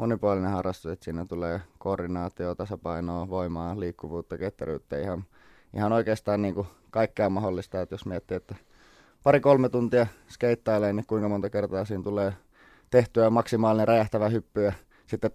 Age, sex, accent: 20-39, male, native